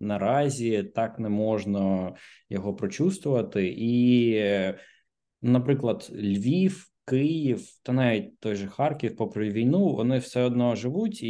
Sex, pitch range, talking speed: male, 100-125 Hz, 110 wpm